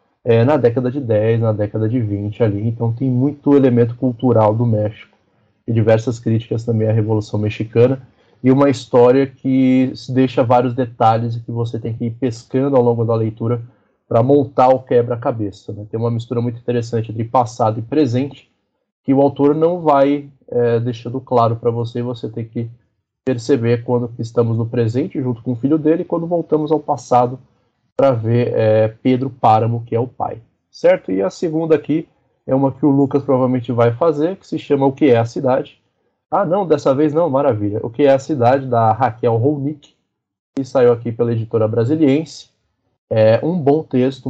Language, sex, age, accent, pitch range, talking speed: Portuguese, male, 20-39, Brazilian, 115-135 Hz, 190 wpm